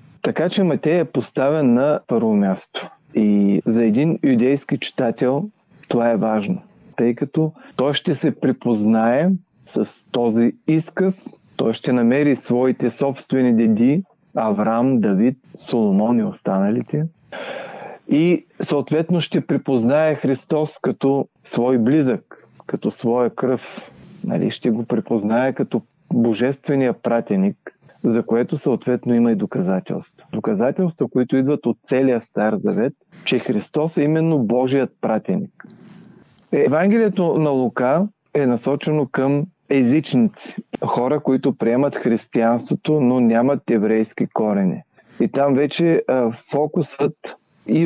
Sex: male